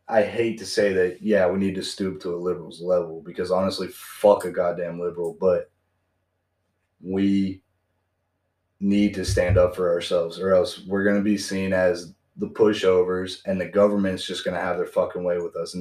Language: English